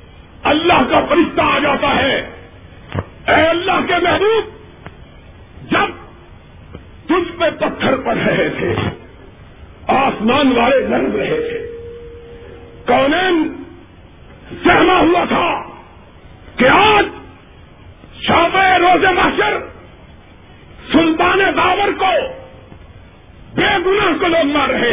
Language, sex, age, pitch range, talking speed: Urdu, male, 50-69, 260-350 Hz, 90 wpm